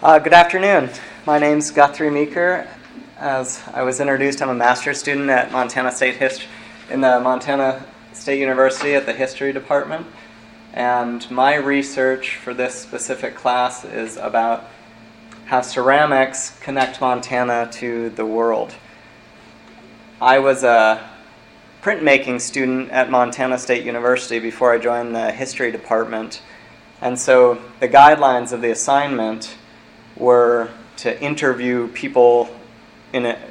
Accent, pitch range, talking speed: American, 120-140 Hz, 130 wpm